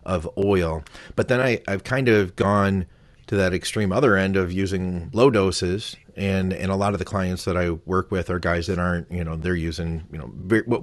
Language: English